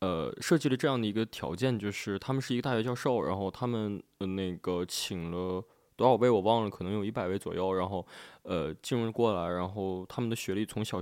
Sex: male